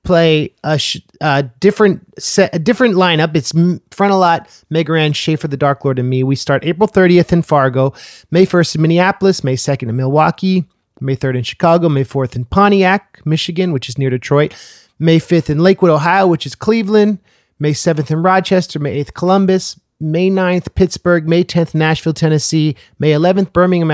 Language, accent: English, American